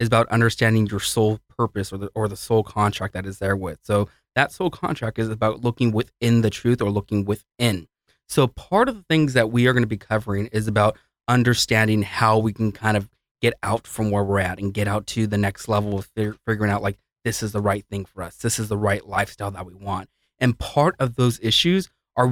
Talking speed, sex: 235 wpm, male